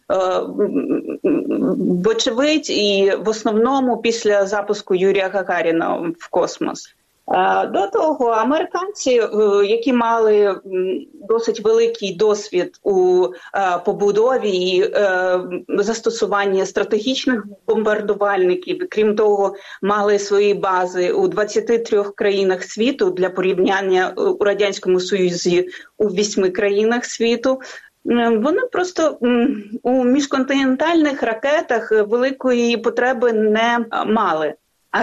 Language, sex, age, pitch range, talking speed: Ukrainian, female, 30-49, 205-275 Hz, 90 wpm